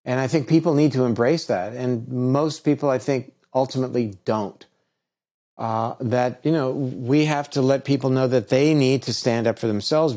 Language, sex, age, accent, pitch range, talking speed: English, male, 50-69, American, 115-145 Hz, 195 wpm